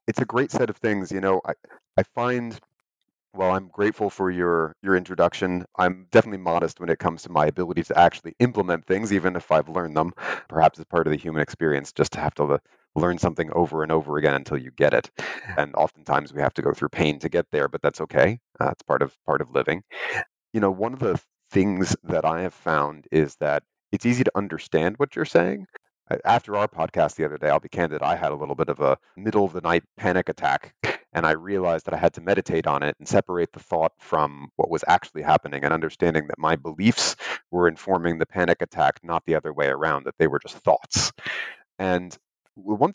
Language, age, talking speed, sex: English, 30-49, 225 wpm, male